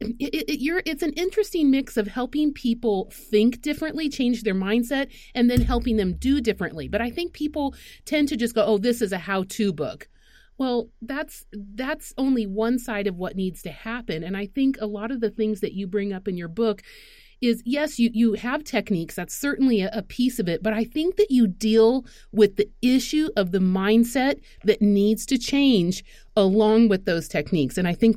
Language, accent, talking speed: English, American, 205 wpm